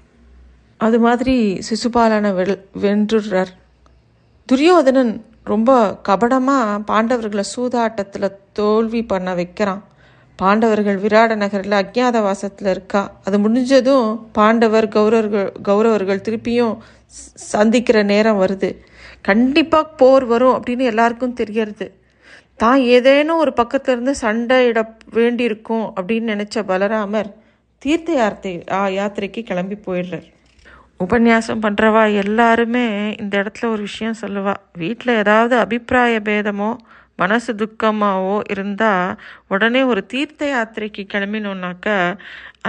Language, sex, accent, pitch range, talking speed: Tamil, female, native, 195-235 Hz, 95 wpm